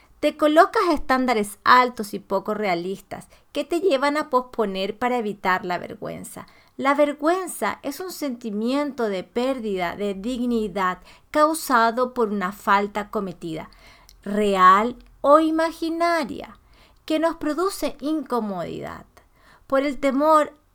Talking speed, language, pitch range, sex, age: 115 wpm, Spanish, 210-285 Hz, female, 40-59